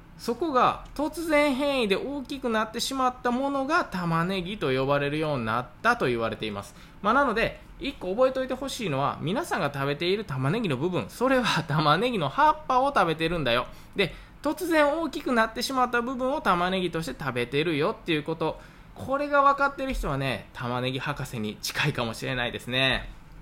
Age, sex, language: 20-39, male, Japanese